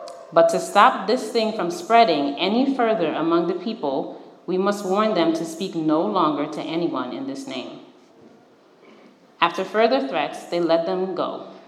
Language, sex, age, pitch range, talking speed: English, female, 30-49, 165-230 Hz, 165 wpm